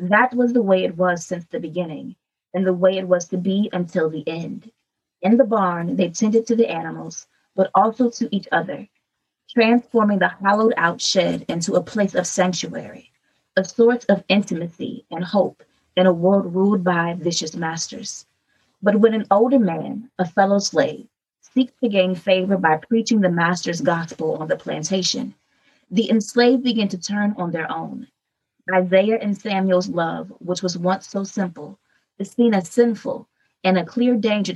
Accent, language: American, English